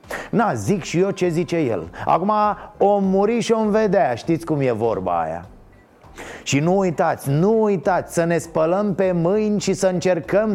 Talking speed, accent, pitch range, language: 180 wpm, native, 165-220 Hz, Romanian